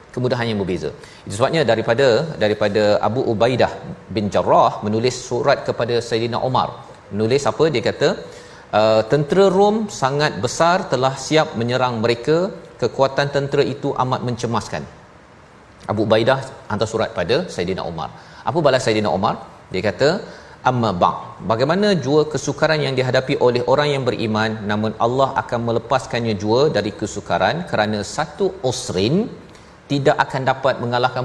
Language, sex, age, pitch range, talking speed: Malayalam, male, 40-59, 115-145 Hz, 135 wpm